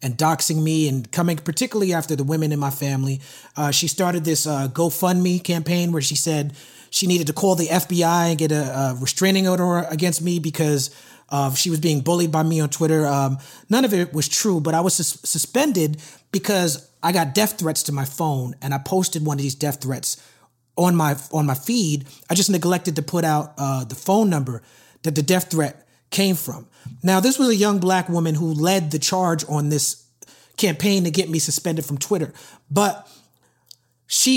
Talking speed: 205 wpm